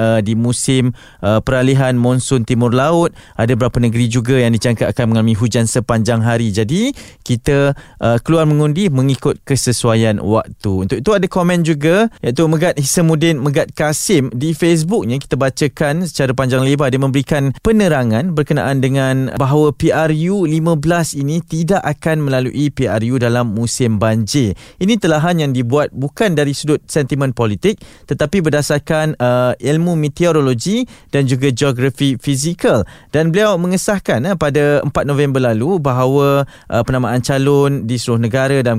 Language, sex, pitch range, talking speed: Malay, male, 125-165 Hz, 145 wpm